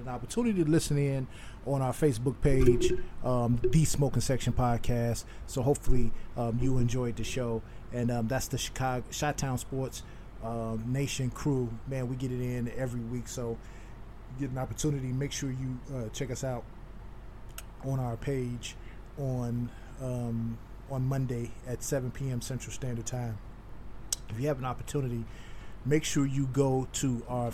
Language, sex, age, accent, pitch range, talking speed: English, male, 30-49, American, 115-130 Hz, 155 wpm